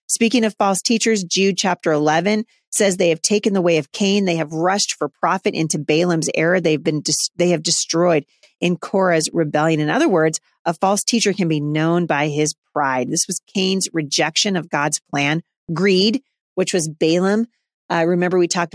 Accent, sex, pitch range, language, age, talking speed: American, female, 155-195 Hz, English, 40-59, 185 wpm